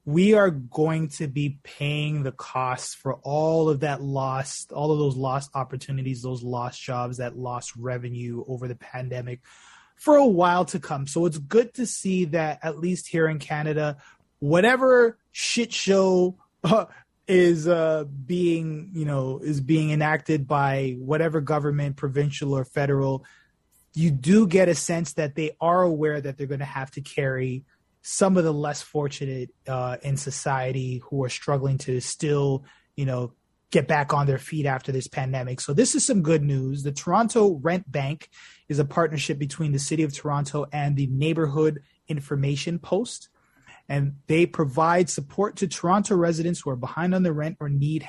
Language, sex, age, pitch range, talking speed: English, male, 20-39, 135-160 Hz, 170 wpm